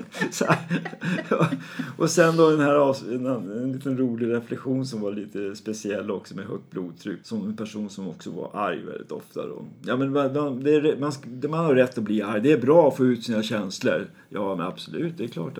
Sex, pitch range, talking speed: male, 105-140 Hz, 225 wpm